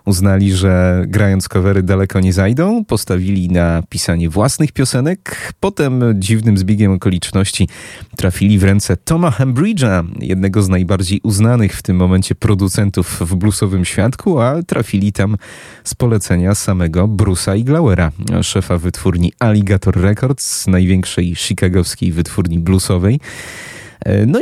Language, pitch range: Polish, 90-115 Hz